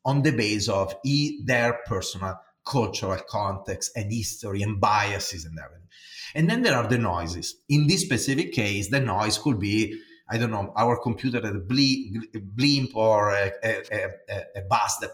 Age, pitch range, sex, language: 30-49, 100-135 Hz, male, English